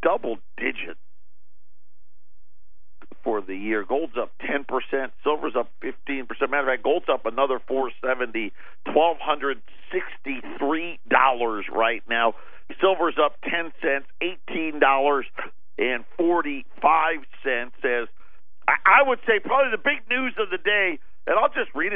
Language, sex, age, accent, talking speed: English, male, 50-69, American, 150 wpm